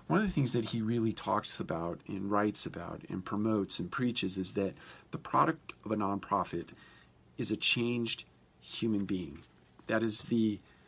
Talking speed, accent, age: 170 wpm, American, 40-59